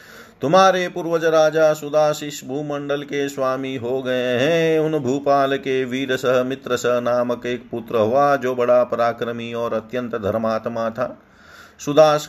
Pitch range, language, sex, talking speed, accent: 115-145 Hz, Hindi, male, 140 wpm, native